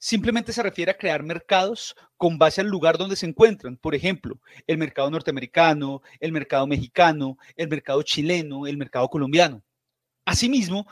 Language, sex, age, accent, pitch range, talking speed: Spanish, male, 40-59, Colombian, 150-200 Hz, 155 wpm